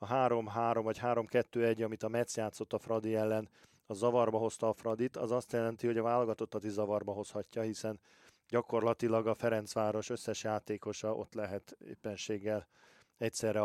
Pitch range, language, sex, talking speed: 105-120 Hz, Hungarian, male, 155 wpm